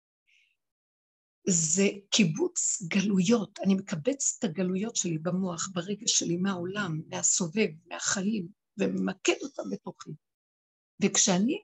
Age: 60-79